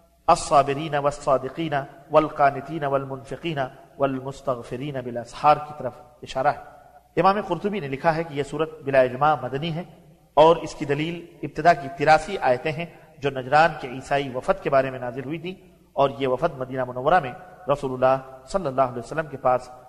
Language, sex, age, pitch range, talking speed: English, male, 40-59, 135-160 Hz, 160 wpm